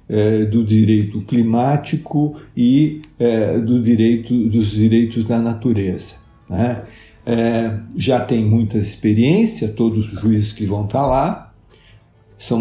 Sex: male